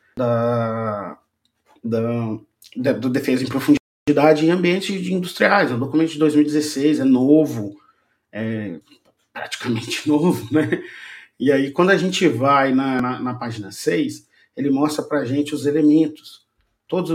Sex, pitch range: male, 125-160 Hz